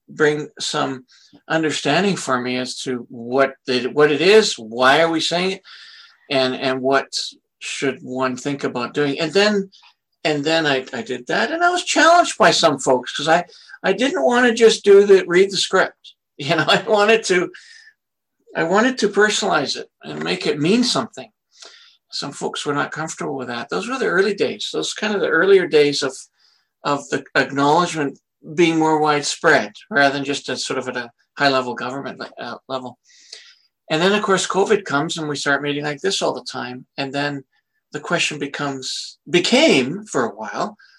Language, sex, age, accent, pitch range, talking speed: English, male, 60-79, American, 135-195 Hz, 185 wpm